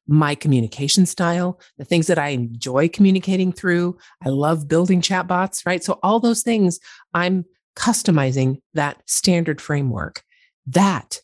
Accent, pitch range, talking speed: American, 135-190 Hz, 135 wpm